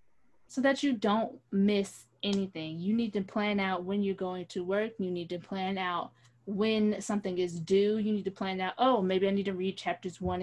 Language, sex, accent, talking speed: English, female, American, 220 wpm